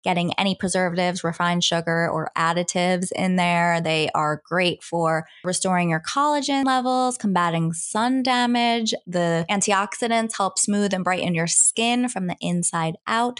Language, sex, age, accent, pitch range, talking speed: English, female, 20-39, American, 175-230 Hz, 145 wpm